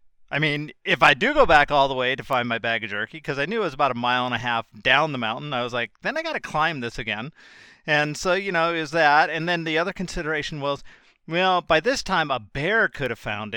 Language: English